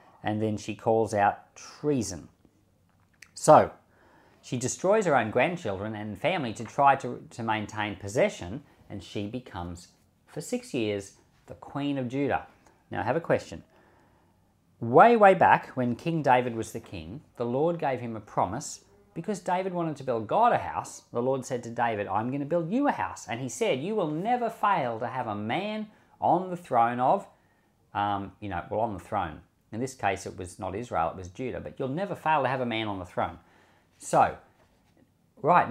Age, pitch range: 40-59, 100-140 Hz